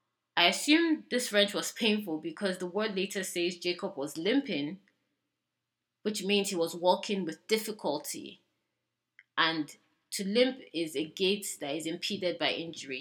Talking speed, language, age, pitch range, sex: 150 wpm, English, 20-39, 160-195 Hz, female